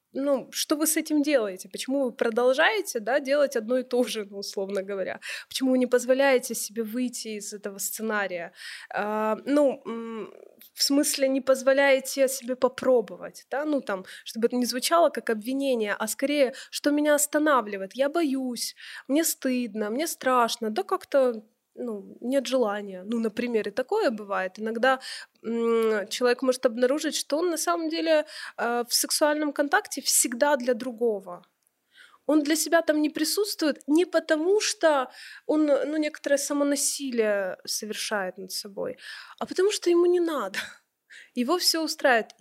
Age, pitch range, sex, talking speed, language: 20-39, 225-290 Hz, female, 140 wpm, Ukrainian